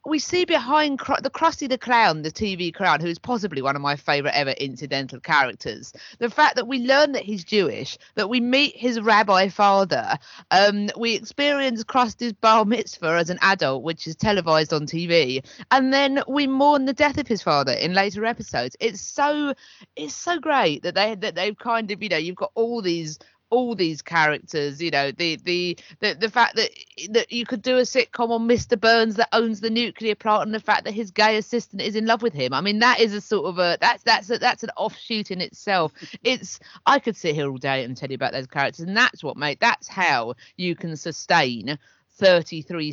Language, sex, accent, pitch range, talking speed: English, female, British, 150-235 Hz, 210 wpm